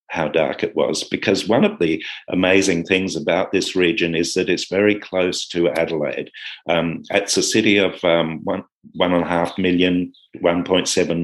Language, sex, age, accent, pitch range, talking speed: English, male, 50-69, British, 85-100 Hz, 175 wpm